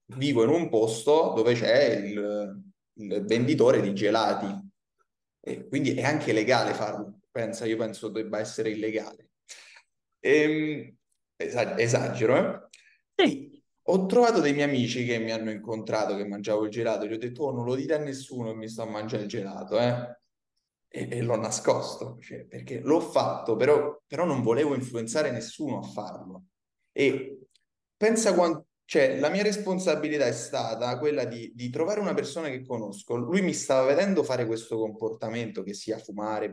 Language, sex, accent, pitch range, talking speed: Italian, male, native, 110-160 Hz, 165 wpm